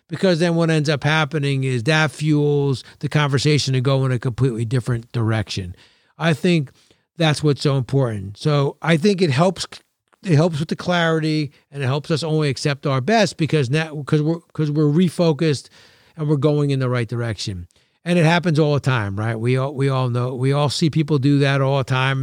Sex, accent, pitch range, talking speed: male, American, 130-165 Hz, 210 wpm